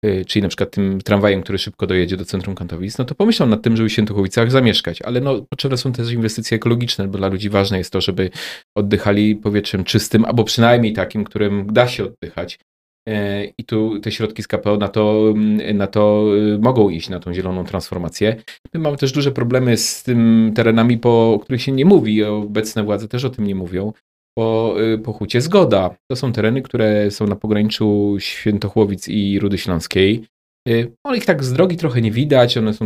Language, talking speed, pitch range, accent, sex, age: Polish, 190 wpm, 100-120 Hz, native, male, 30-49